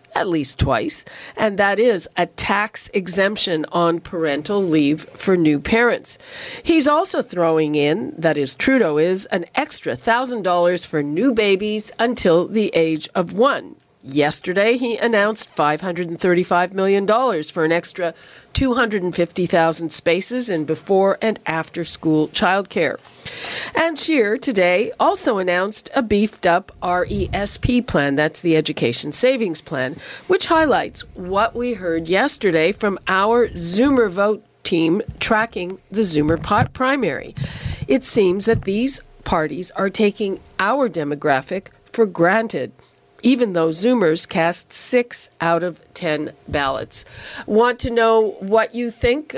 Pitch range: 170-225 Hz